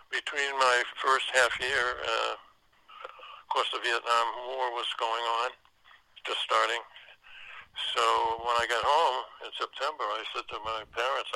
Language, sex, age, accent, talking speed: English, male, 60-79, American, 150 wpm